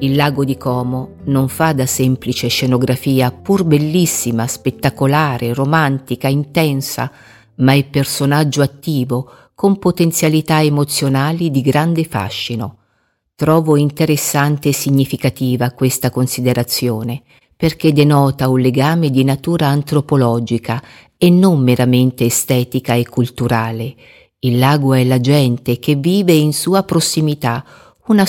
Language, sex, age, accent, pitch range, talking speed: Italian, female, 50-69, native, 125-150 Hz, 115 wpm